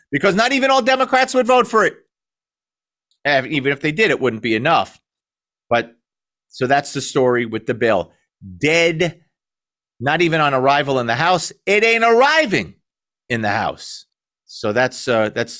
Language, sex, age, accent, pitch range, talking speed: English, male, 40-59, American, 130-195 Hz, 165 wpm